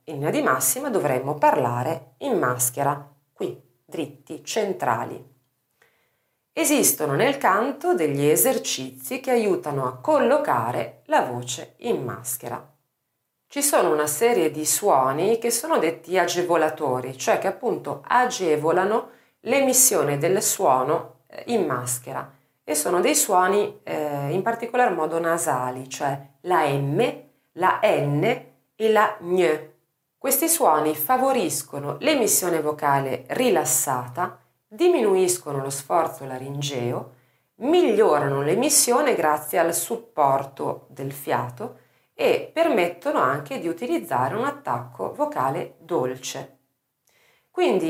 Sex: female